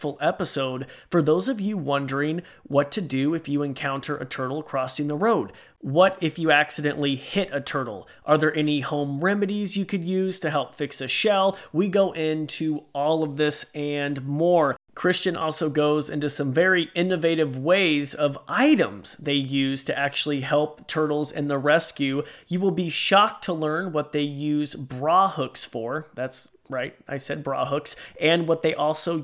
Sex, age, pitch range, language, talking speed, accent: male, 30-49, 145-175 Hz, English, 175 wpm, American